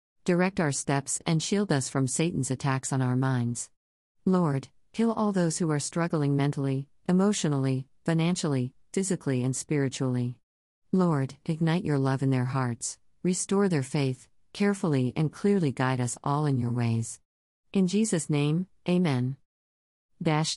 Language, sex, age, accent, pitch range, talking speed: English, female, 50-69, American, 130-165 Hz, 145 wpm